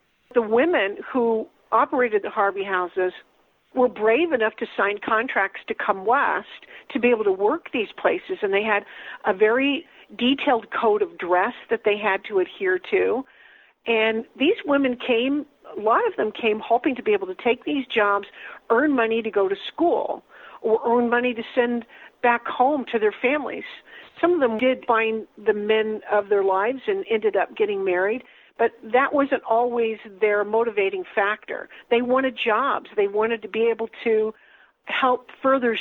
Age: 50-69